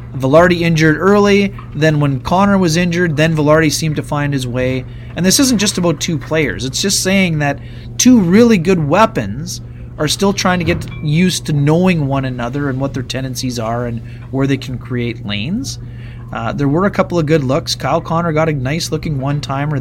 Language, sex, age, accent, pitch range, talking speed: English, male, 30-49, American, 120-160 Hz, 200 wpm